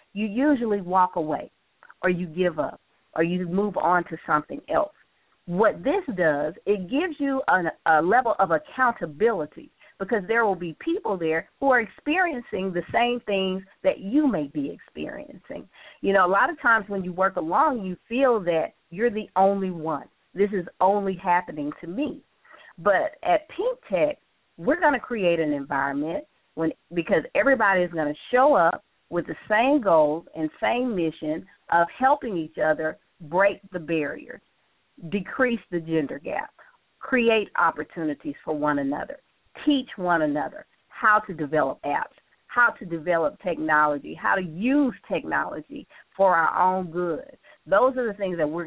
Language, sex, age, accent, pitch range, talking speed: English, female, 40-59, American, 160-235 Hz, 165 wpm